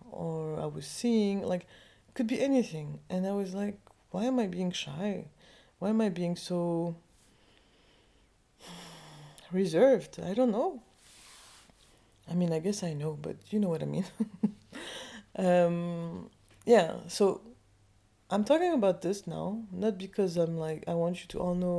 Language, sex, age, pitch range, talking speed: English, female, 20-39, 155-200 Hz, 155 wpm